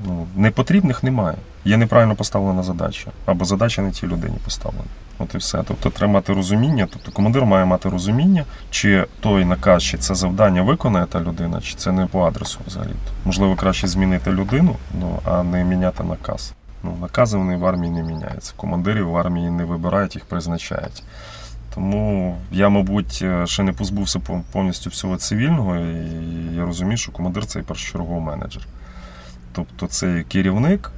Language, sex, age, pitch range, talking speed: Ukrainian, male, 20-39, 85-100 Hz, 165 wpm